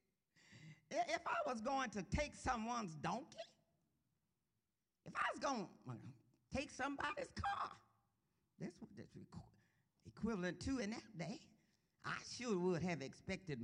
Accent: American